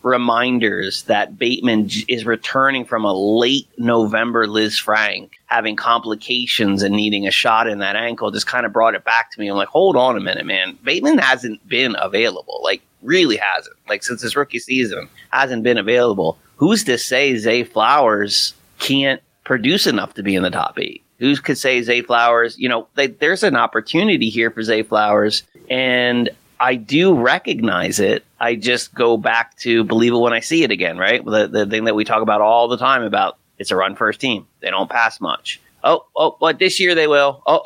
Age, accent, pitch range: 30-49, American, 110-130 Hz